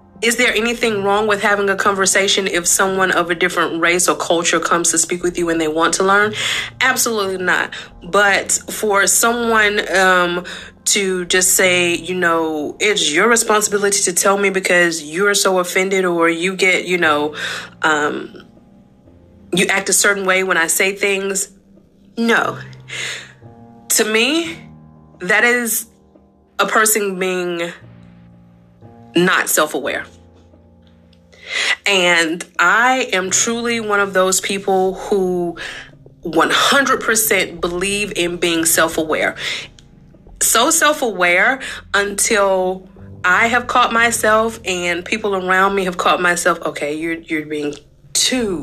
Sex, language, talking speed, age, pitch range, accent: female, English, 130 wpm, 20-39, 170-205 Hz, American